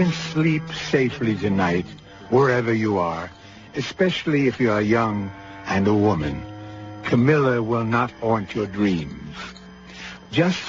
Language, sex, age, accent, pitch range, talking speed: English, male, 60-79, American, 110-160 Hz, 125 wpm